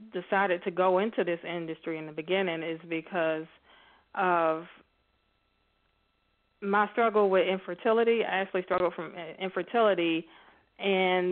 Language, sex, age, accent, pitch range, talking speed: English, female, 20-39, American, 165-190 Hz, 115 wpm